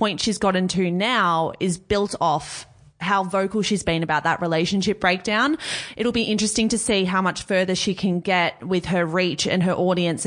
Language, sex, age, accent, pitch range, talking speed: English, female, 20-39, Australian, 170-210 Hz, 195 wpm